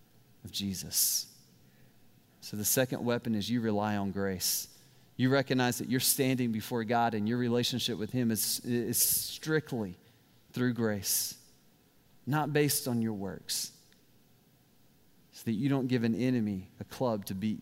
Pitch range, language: 110-160 Hz, English